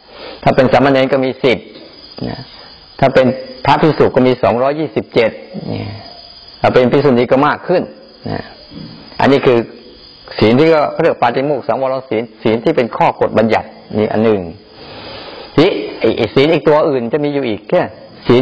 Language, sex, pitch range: Thai, male, 115-150 Hz